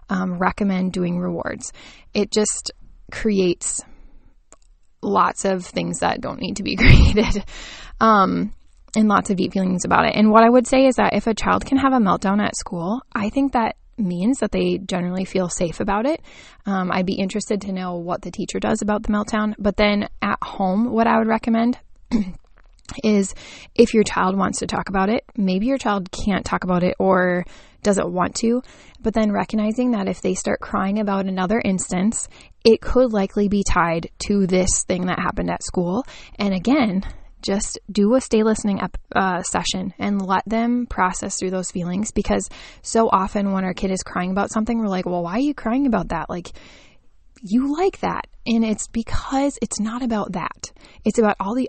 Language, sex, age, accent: English, female, 20-39, American